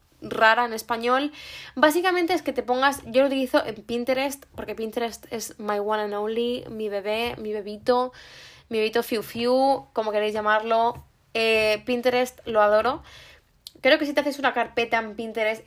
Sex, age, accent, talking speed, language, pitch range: female, 20-39, Spanish, 170 wpm, Spanish, 215-260 Hz